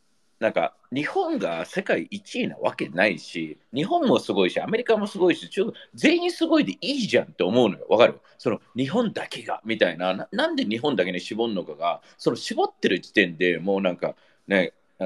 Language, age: Japanese, 40-59